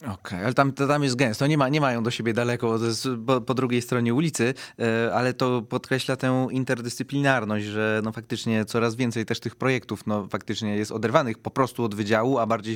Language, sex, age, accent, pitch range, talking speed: Polish, male, 30-49, native, 110-135 Hz, 200 wpm